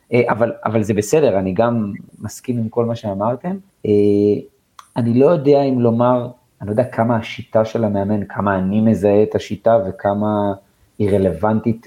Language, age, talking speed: Hebrew, 30-49, 155 wpm